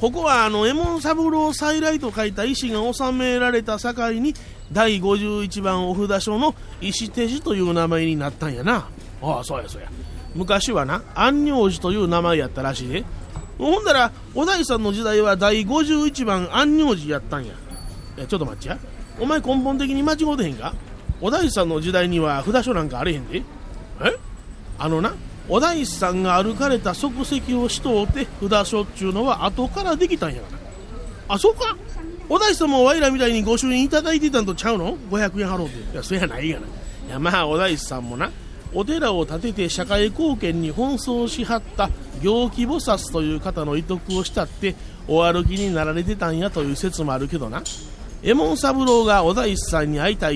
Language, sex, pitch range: Japanese, male, 170-255 Hz